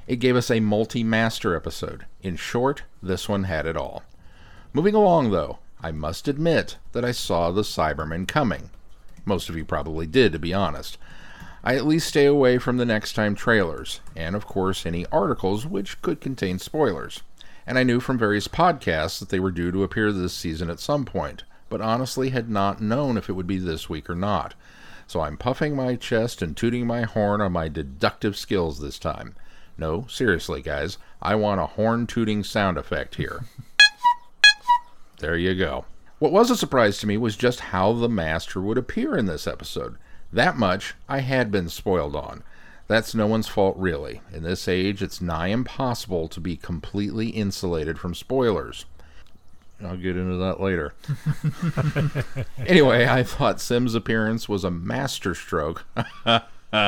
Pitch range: 90-120 Hz